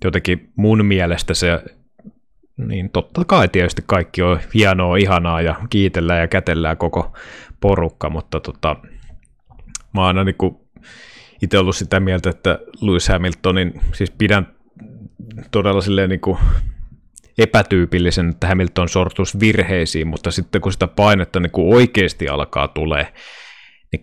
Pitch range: 85-100 Hz